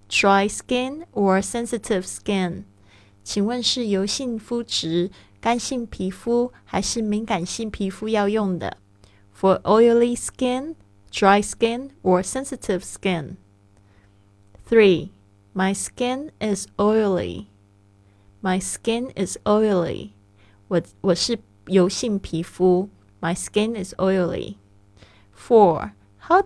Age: 20-39